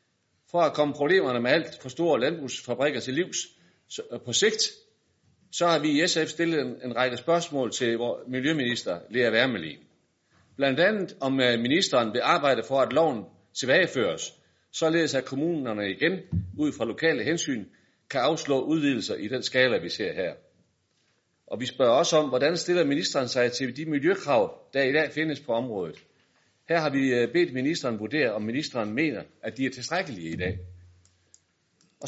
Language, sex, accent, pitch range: Danish, male, native, 120-160 Hz